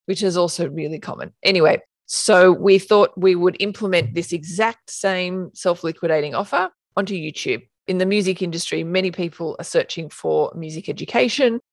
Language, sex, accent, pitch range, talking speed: English, female, Australian, 165-205 Hz, 155 wpm